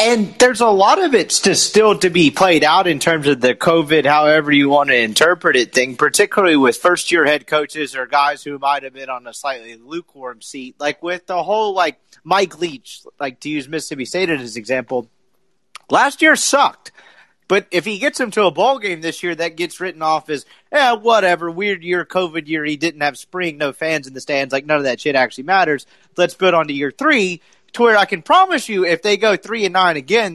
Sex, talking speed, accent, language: male, 225 wpm, American, English